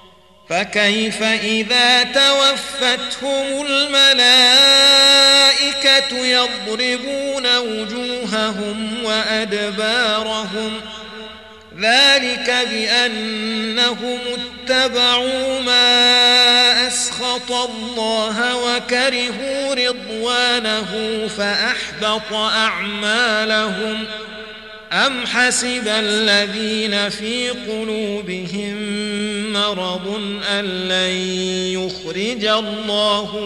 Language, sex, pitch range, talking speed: Arabic, male, 205-245 Hz, 50 wpm